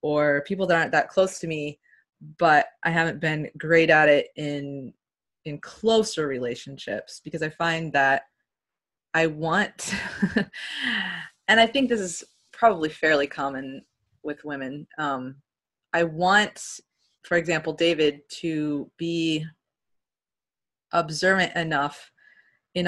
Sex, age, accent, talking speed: female, 20-39, American, 120 wpm